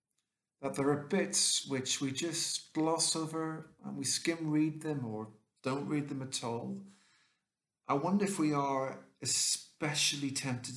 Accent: British